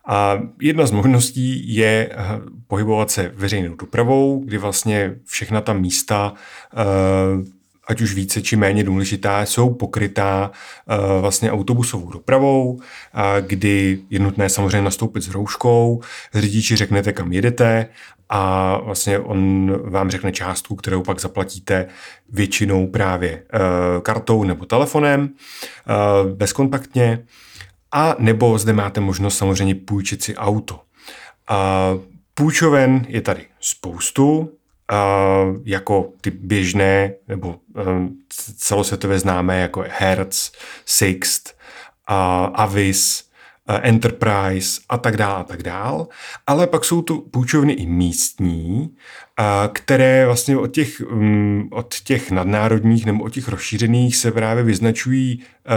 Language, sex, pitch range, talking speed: Czech, male, 95-115 Hz, 105 wpm